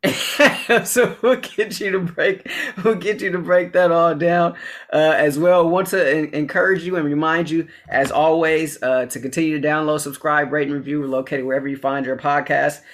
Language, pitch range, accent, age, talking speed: English, 145-175 Hz, American, 20-39, 195 wpm